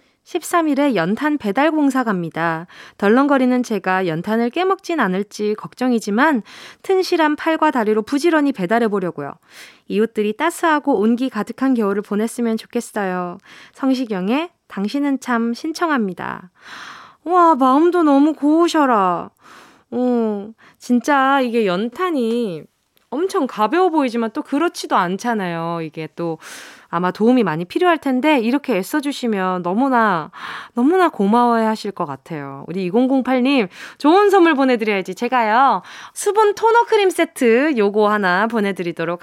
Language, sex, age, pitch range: Korean, female, 20-39, 205-320 Hz